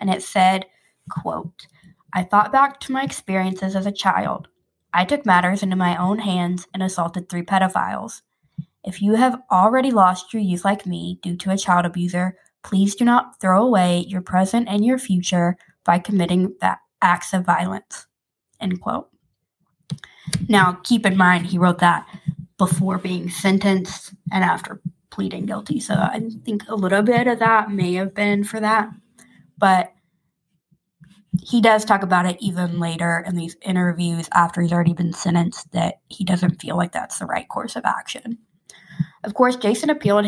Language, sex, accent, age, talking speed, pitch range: English, female, American, 20-39, 170 wpm, 175-200 Hz